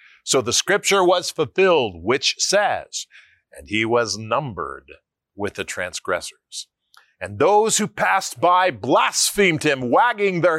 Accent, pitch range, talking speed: American, 115-180 Hz, 130 wpm